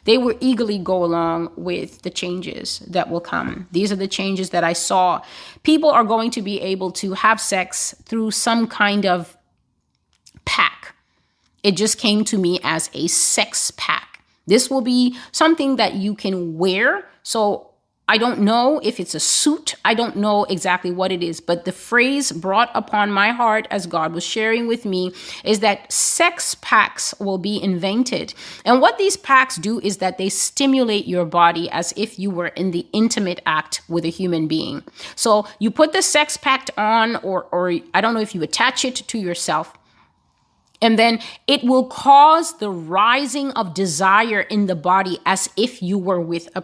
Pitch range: 185-250 Hz